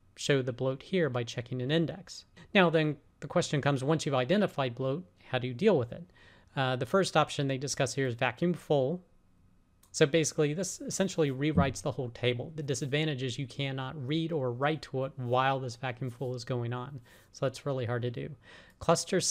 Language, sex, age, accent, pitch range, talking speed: English, male, 40-59, American, 130-155 Hz, 200 wpm